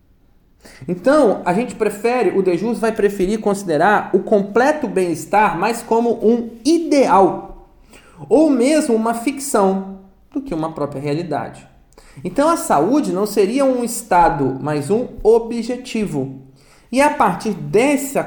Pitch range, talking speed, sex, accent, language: 150-230 Hz, 130 wpm, male, Brazilian, Portuguese